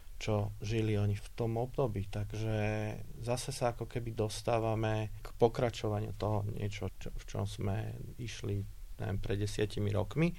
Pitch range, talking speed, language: 100-110 Hz, 145 wpm, Slovak